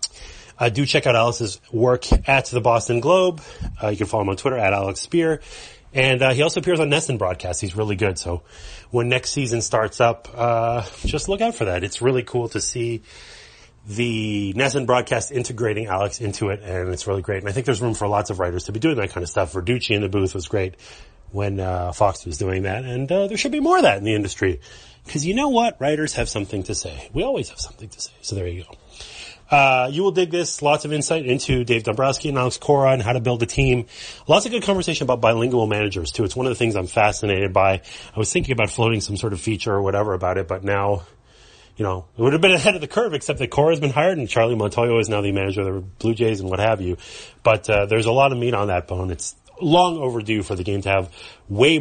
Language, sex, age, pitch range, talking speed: English, male, 30-49, 100-130 Hz, 250 wpm